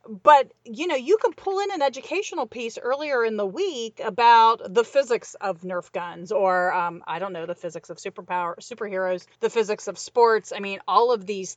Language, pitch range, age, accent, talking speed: English, 190-240 Hz, 40-59, American, 200 wpm